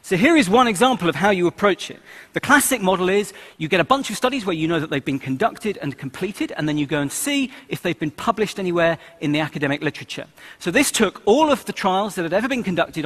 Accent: British